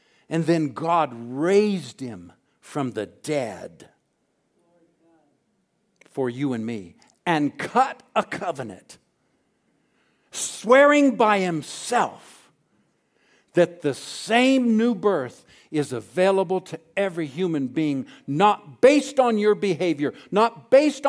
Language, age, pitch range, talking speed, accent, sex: English, 60-79, 125-200 Hz, 105 wpm, American, male